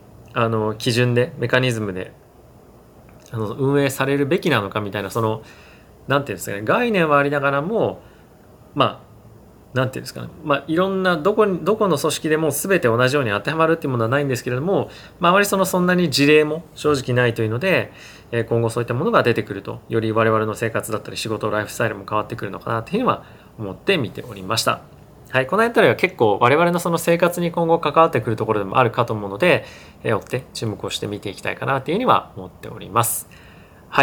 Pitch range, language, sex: 105-145 Hz, Japanese, male